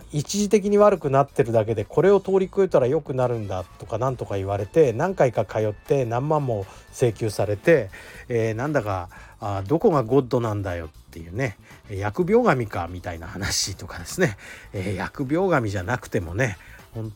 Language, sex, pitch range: Japanese, male, 105-170 Hz